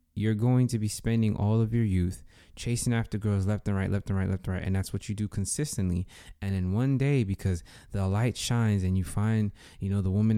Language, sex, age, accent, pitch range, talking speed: English, male, 20-39, American, 95-110 Hz, 245 wpm